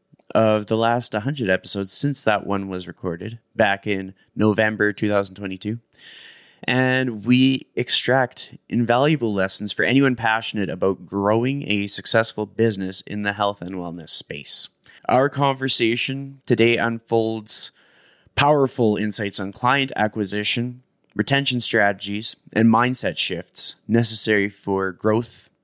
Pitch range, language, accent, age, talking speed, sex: 100-125 Hz, English, American, 20-39, 115 wpm, male